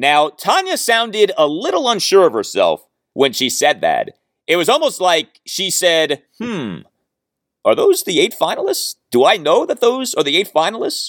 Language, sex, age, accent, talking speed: English, male, 30-49, American, 180 wpm